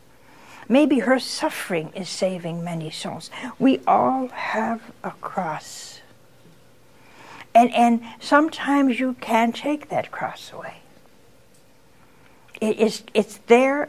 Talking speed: 110 wpm